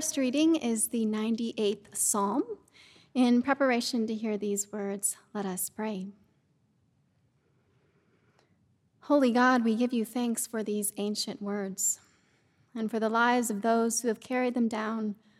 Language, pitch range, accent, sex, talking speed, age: English, 205-255 Hz, American, female, 135 wpm, 30-49